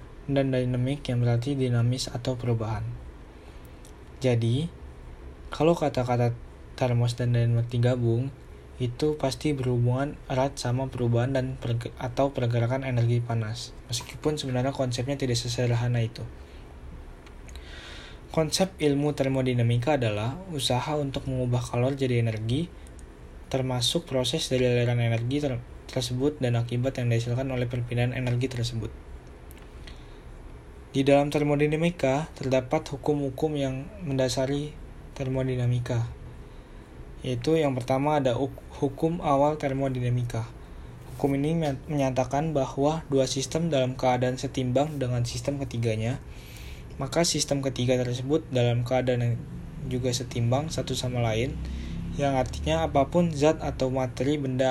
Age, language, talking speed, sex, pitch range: 20-39, Indonesian, 115 wpm, male, 120-140 Hz